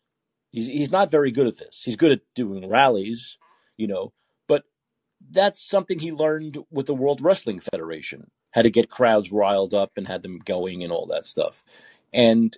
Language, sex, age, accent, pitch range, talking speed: English, male, 40-59, American, 120-180 Hz, 185 wpm